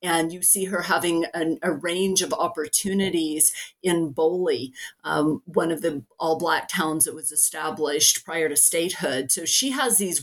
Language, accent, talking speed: English, American, 160 wpm